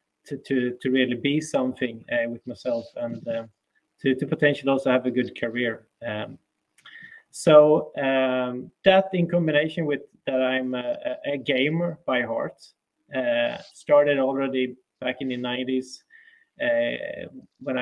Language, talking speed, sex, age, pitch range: English, 140 wpm, male, 20-39, 125-150 Hz